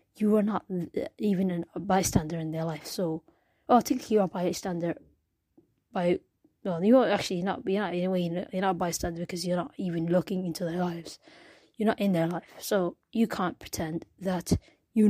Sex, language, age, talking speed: female, English, 20-39, 200 wpm